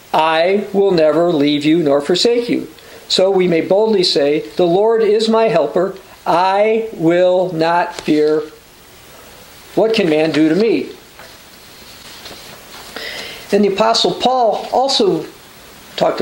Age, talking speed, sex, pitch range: 50-69, 125 wpm, male, 165-215 Hz